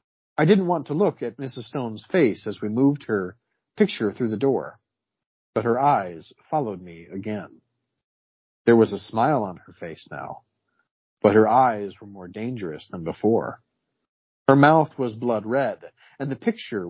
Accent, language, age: American, English, 40-59